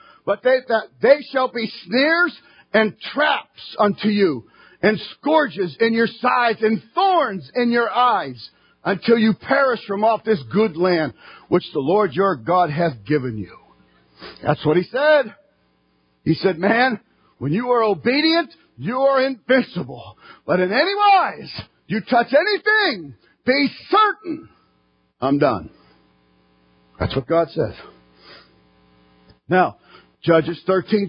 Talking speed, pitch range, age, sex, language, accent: 135 wpm, 170-255 Hz, 50-69, male, English, American